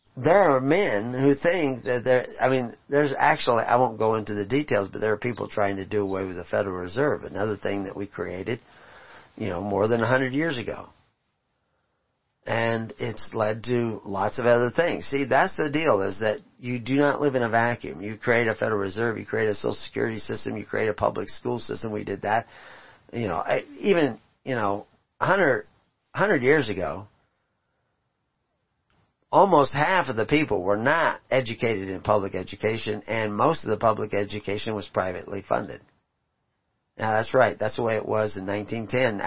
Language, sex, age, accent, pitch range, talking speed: English, male, 40-59, American, 105-125 Hz, 185 wpm